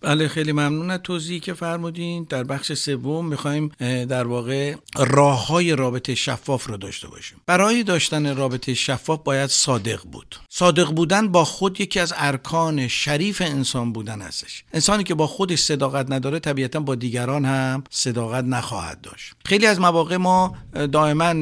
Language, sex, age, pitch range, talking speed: Persian, male, 60-79, 130-170 Hz, 150 wpm